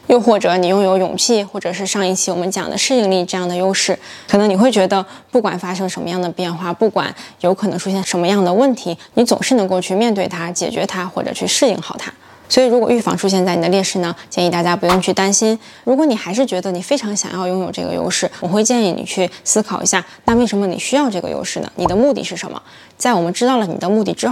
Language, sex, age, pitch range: Chinese, female, 20-39, 180-220 Hz